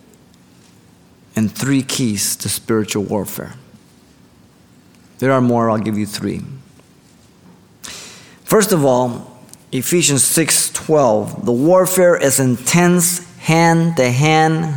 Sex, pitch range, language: male, 130-180 Hz, English